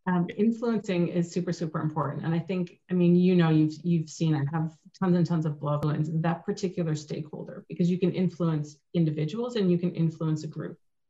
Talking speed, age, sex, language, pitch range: 205 wpm, 40-59, female, English, 150-180 Hz